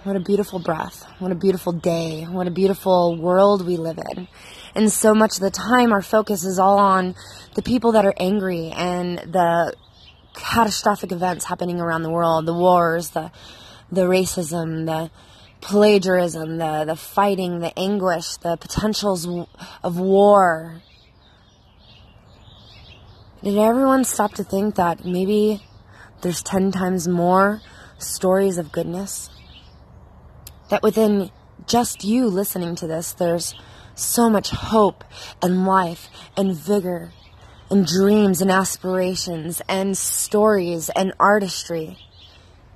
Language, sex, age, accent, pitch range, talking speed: English, female, 20-39, American, 160-200 Hz, 130 wpm